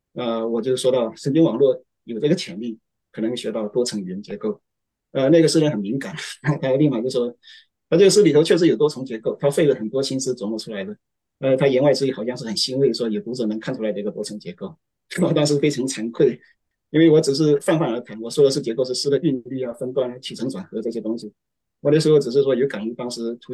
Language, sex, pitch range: Chinese, male, 110-145 Hz